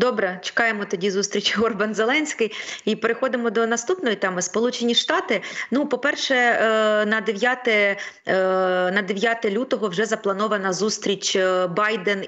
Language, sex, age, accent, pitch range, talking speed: Ukrainian, female, 30-49, native, 190-235 Hz, 110 wpm